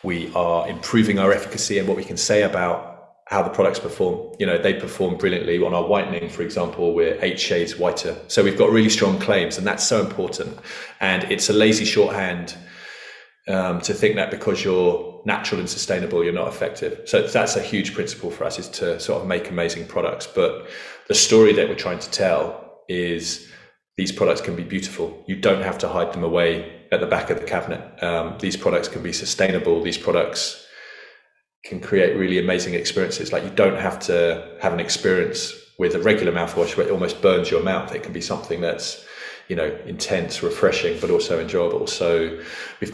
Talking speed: 200 wpm